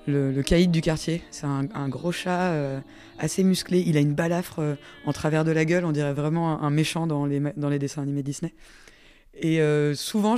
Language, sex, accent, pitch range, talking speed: French, female, French, 150-185 Hz, 225 wpm